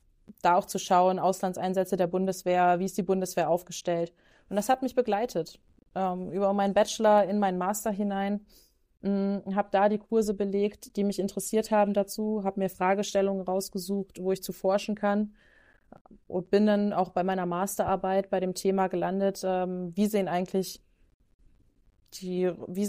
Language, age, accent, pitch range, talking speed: German, 20-39, German, 185-205 Hz, 155 wpm